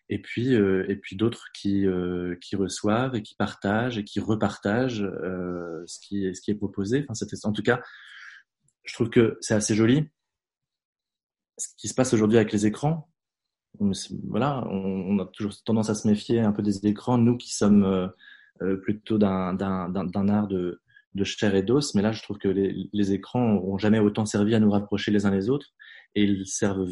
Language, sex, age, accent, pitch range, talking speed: French, male, 20-39, French, 95-110 Hz, 205 wpm